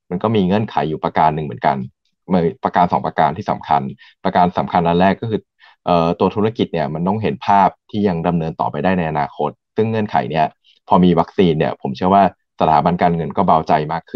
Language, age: Thai, 20-39